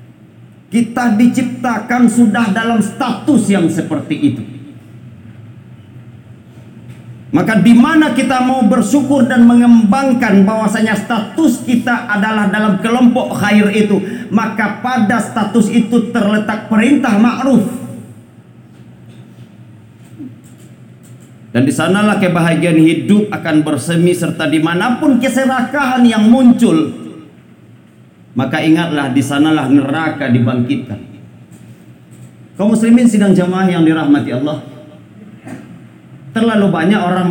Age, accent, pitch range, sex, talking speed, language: 40-59, native, 150-235 Hz, male, 90 wpm, Indonesian